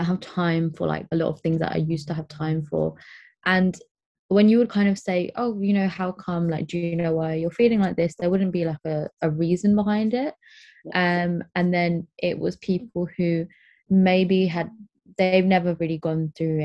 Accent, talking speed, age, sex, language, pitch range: British, 215 wpm, 20-39, female, English, 160-185 Hz